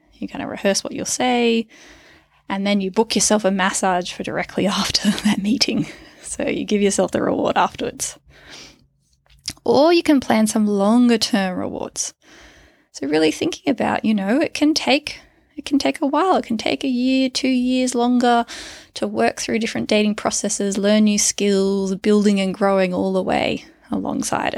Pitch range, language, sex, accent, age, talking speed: 200-260 Hz, English, female, Australian, 20-39, 175 wpm